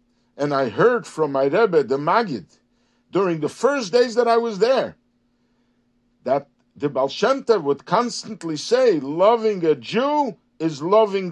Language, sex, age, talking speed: English, male, 60-79, 145 wpm